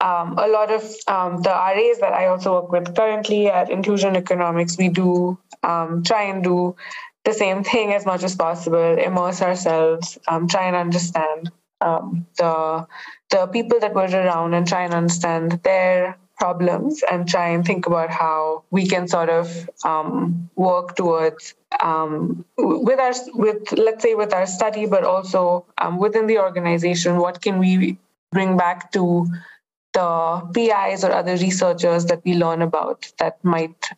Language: English